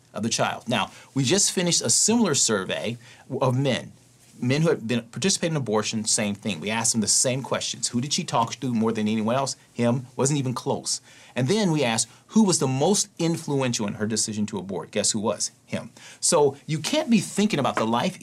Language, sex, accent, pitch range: English, male, American, 115-150 Hz